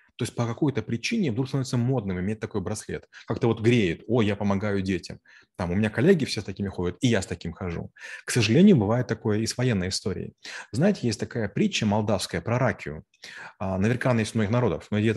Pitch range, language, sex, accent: 100-120 Hz, Russian, male, native